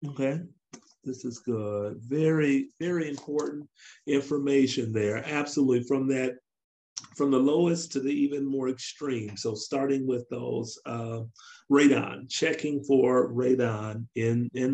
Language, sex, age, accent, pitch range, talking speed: English, male, 50-69, American, 125-160 Hz, 125 wpm